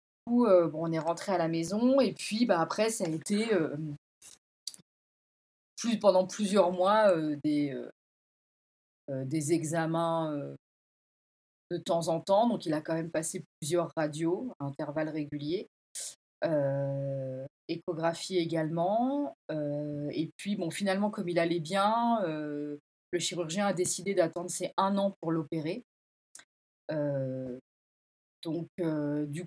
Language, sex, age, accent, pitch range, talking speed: French, female, 30-49, French, 150-185 Hz, 130 wpm